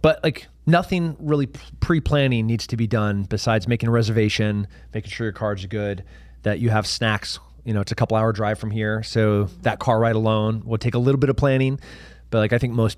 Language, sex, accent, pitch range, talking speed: English, male, American, 95-120 Hz, 215 wpm